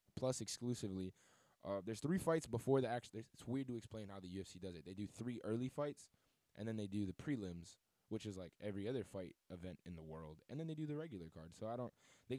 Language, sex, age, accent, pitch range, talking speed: English, male, 20-39, American, 105-135 Hz, 240 wpm